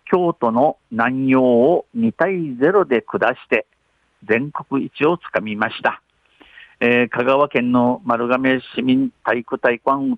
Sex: male